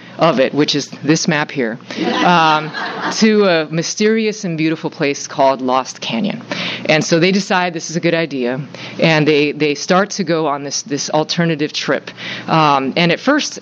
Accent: American